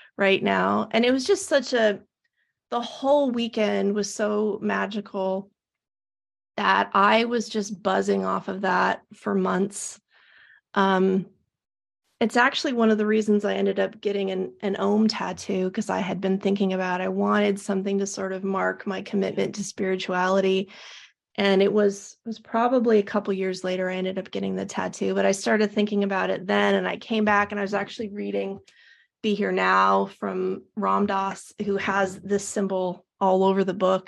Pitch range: 190-225 Hz